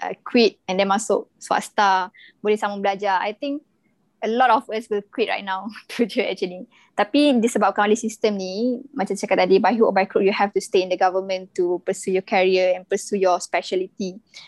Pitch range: 195-235 Hz